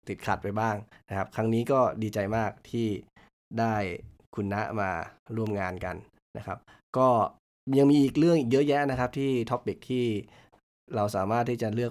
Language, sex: Thai, male